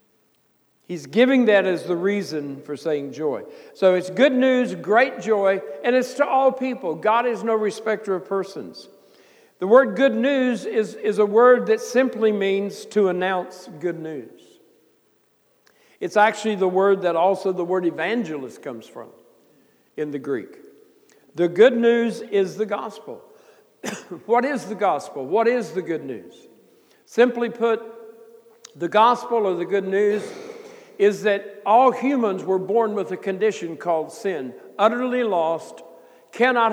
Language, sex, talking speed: English, male, 150 wpm